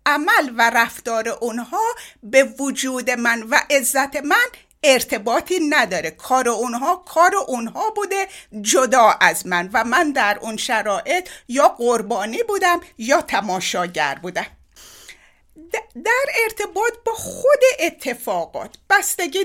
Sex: female